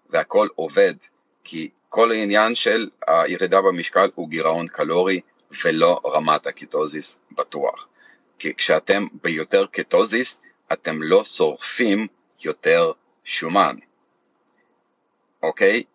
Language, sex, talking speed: Hebrew, male, 95 wpm